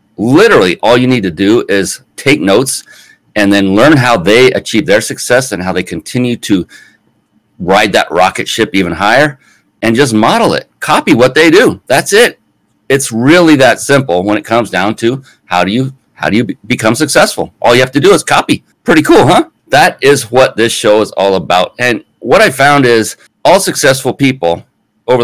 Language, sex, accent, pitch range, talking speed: English, male, American, 100-130 Hz, 195 wpm